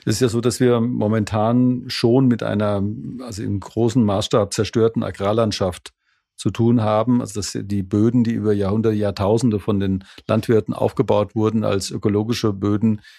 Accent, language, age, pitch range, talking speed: German, German, 50-69, 105-120 Hz, 160 wpm